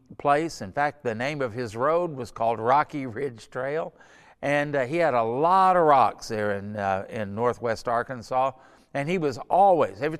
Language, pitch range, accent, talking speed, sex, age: English, 125-150 Hz, American, 190 wpm, male, 50-69